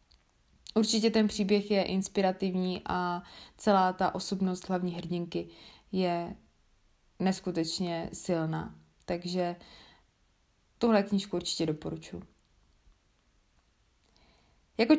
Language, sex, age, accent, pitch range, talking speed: Czech, female, 20-39, native, 185-215 Hz, 80 wpm